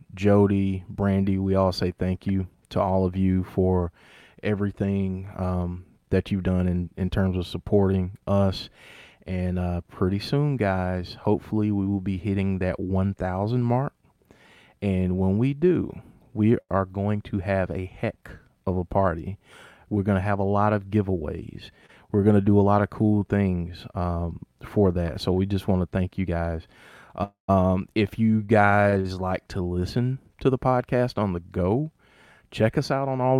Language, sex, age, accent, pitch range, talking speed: English, male, 30-49, American, 90-105 Hz, 170 wpm